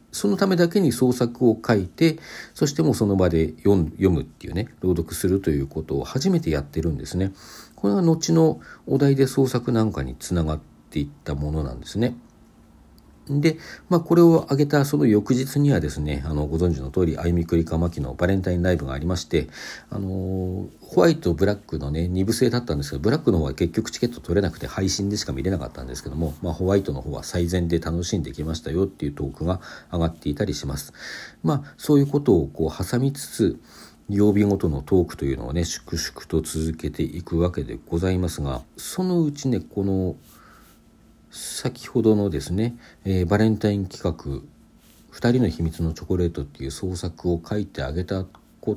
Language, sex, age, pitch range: Japanese, male, 50-69, 80-120 Hz